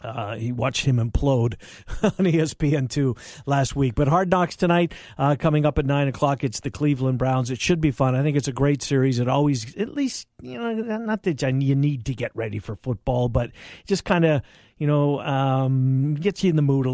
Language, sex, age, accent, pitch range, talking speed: English, male, 50-69, American, 130-155 Hz, 215 wpm